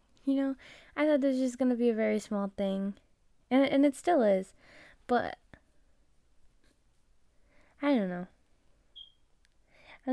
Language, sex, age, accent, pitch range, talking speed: English, female, 10-29, American, 185-260 Hz, 140 wpm